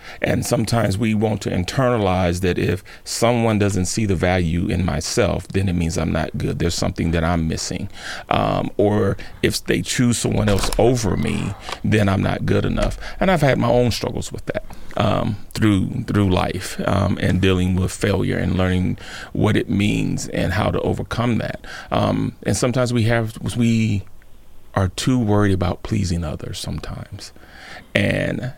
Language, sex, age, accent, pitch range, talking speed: English, male, 40-59, American, 90-110 Hz, 170 wpm